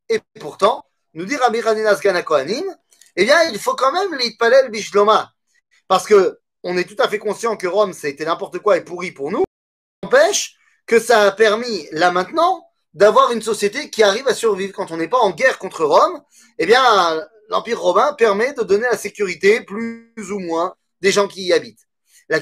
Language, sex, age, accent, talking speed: French, male, 30-49, French, 195 wpm